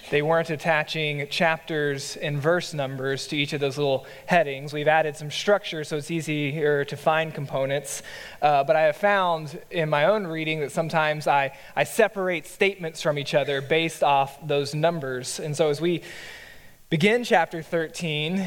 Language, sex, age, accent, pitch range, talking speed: English, male, 20-39, American, 145-175 Hz, 170 wpm